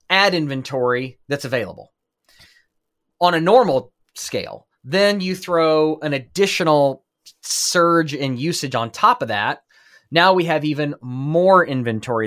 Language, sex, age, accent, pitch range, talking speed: English, male, 20-39, American, 125-165 Hz, 125 wpm